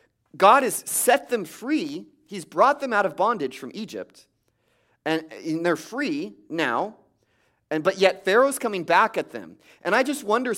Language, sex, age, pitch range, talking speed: English, male, 30-49, 150-210 Hz, 170 wpm